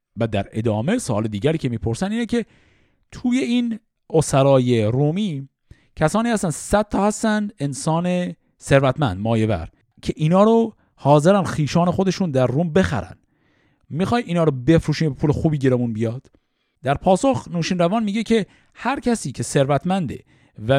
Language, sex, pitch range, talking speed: Persian, male, 125-195 Hz, 145 wpm